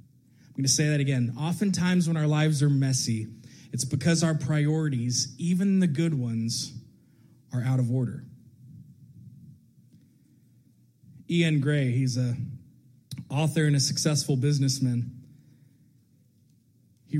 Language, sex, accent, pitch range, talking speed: English, male, American, 130-150 Hz, 120 wpm